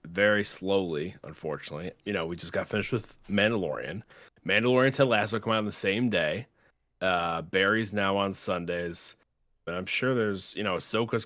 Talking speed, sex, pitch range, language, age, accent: 170 wpm, male, 90-115 Hz, English, 30-49, American